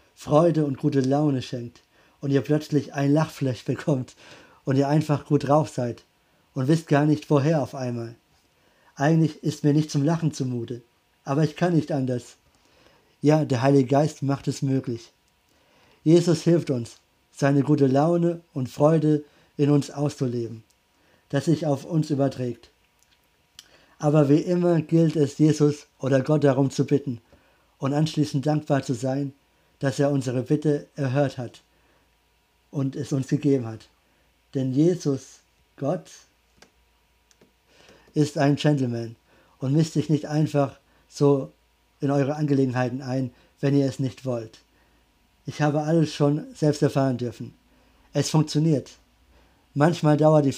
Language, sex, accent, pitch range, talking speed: German, male, German, 125-150 Hz, 140 wpm